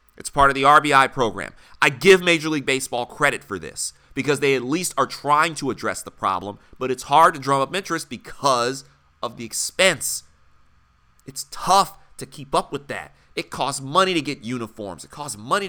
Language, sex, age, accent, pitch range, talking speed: English, male, 30-49, American, 120-155 Hz, 195 wpm